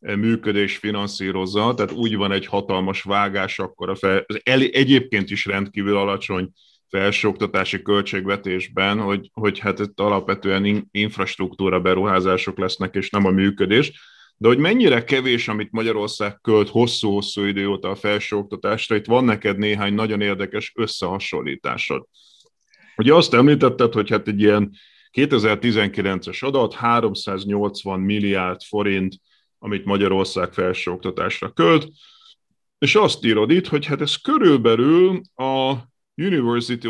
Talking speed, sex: 120 wpm, male